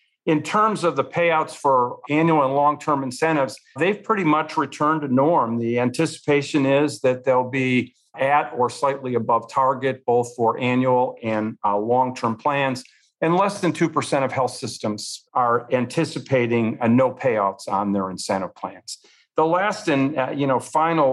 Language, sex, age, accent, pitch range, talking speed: English, male, 50-69, American, 115-140 Hz, 160 wpm